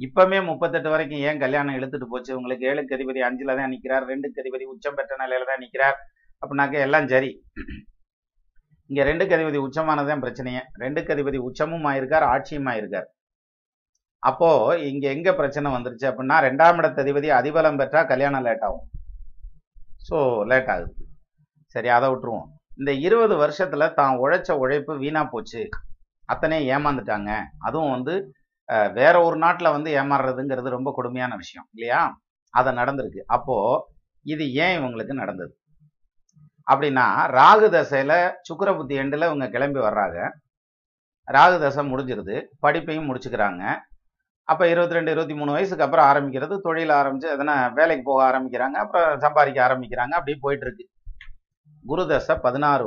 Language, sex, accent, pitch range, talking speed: Tamil, male, native, 130-155 Hz, 125 wpm